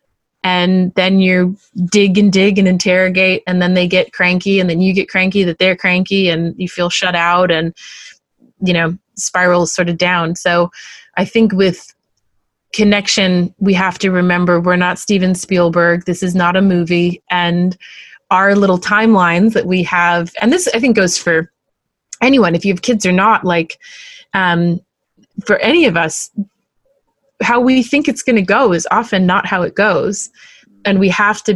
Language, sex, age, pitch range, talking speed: English, female, 30-49, 175-200 Hz, 180 wpm